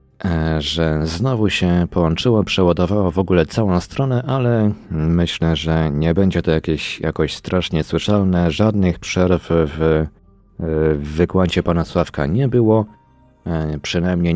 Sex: male